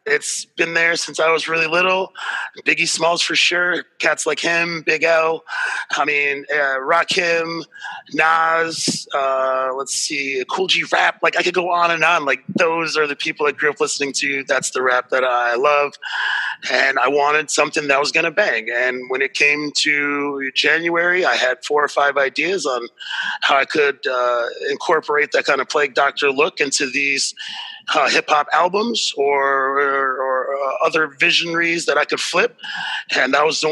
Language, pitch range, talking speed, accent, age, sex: English, 135-170 Hz, 185 wpm, American, 30-49, male